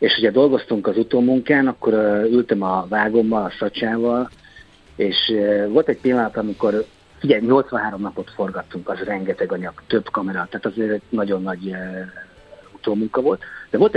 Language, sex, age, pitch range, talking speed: Hungarian, male, 50-69, 105-150 Hz, 145 wpm